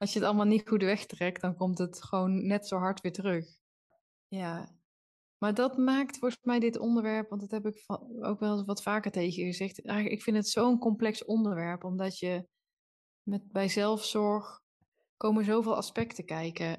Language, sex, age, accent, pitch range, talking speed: Dutch, female, 20-39, Dutch, 180-210 Hz, 180 wpm